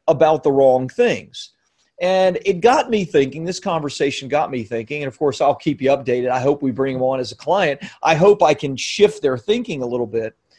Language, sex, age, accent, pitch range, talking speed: English, male, 40-59, American, 135-180 Hz, 225 wpm